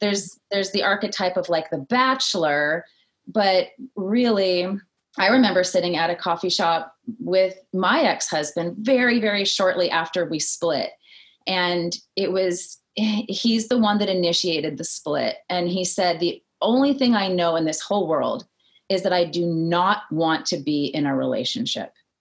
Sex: female